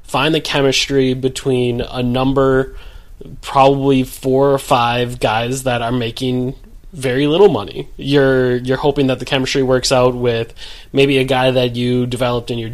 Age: 20-39